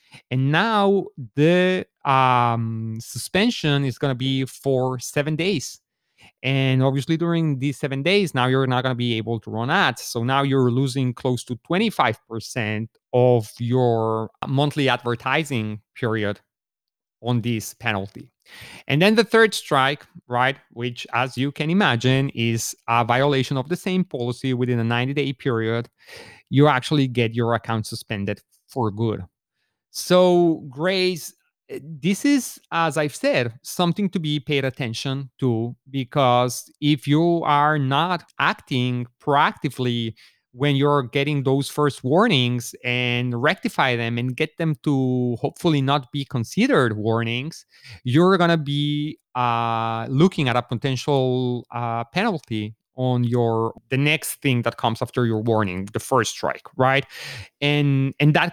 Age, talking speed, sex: 30-49, 145 wpm, male